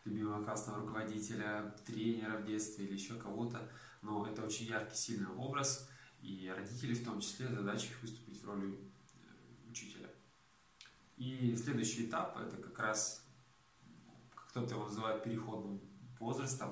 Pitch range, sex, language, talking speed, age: 100-120 Hz, male, Russian, 135 wpm, 20-39